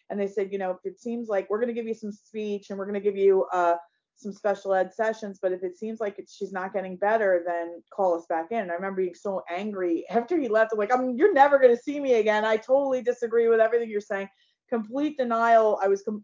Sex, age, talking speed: female, 30-49, 275 wpm